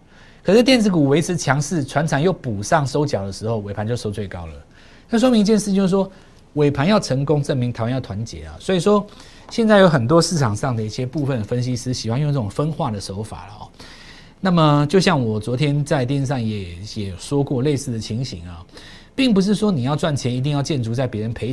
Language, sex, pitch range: Chinese, male, 110-165 Hz